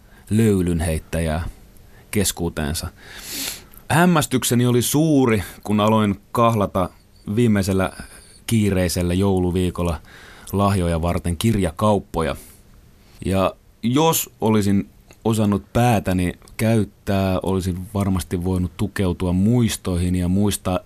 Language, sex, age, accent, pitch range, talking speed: Finnish, male, 30-49, native, 90-110 Hz, 85 wpm